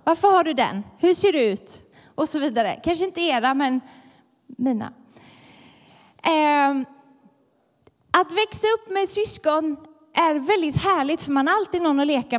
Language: Swedish